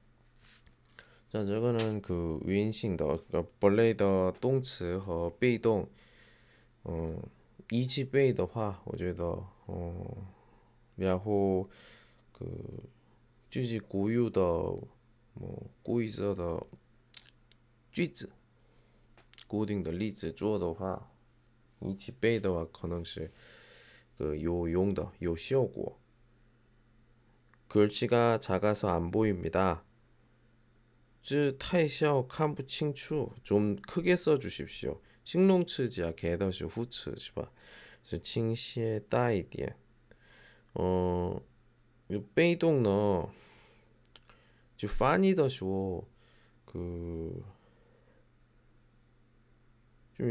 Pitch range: 95-120 Hz